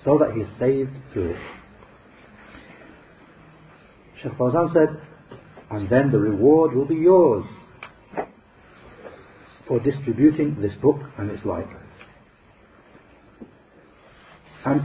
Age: 50-69